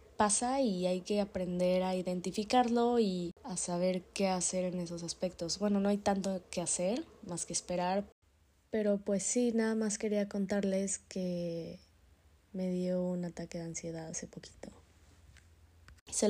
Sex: female